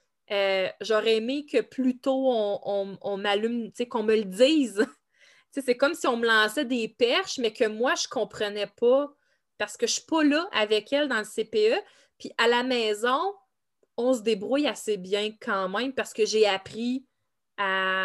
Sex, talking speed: female, 200 wpm